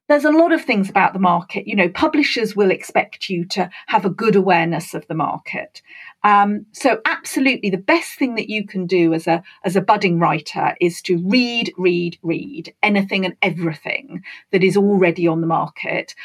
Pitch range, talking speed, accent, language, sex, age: 190-250 Hz, 190 wpm, British, English, female, 40-59